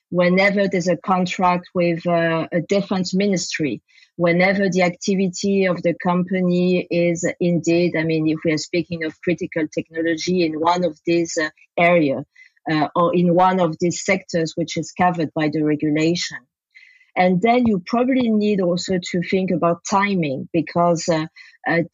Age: 40-59